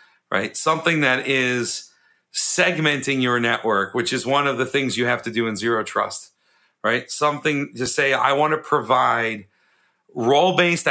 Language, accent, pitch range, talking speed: English, American, 120-145 Hz, 160 wpm